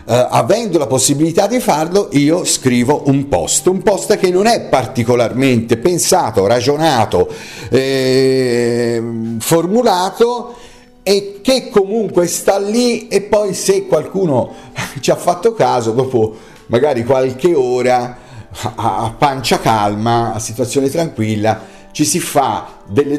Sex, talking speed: male, 125 wpm